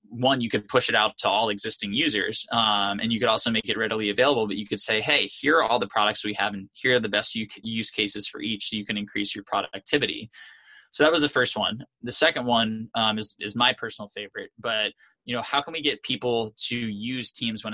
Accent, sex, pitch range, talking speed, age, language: American, male, 105-125 Hz, 245 wpm, 20-39, English